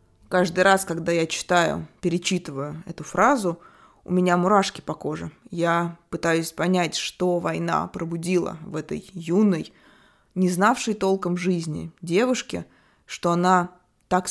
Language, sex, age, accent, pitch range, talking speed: Russian, female, 20-39, native, 170-205 Hz, 125 wpm